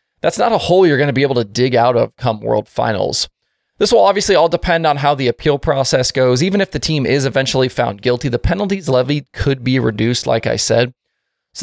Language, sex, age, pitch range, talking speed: English, male, 20-39, 125-175 Hz, 230 wpm